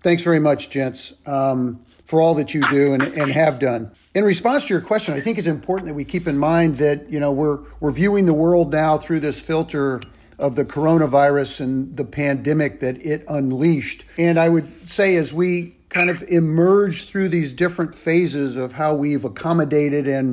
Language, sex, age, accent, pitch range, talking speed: English, male, 50-69, American, 140-170 Hz, 200 wpm